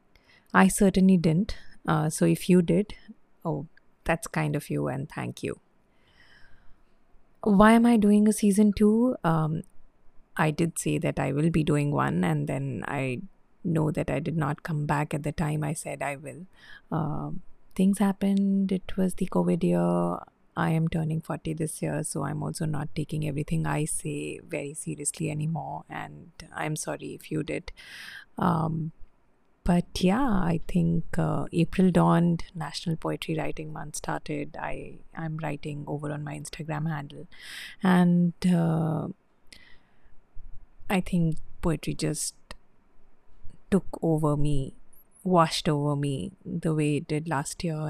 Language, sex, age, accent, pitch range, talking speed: English, female, 30-49, Indian, 150-175 Hz, 150 wpm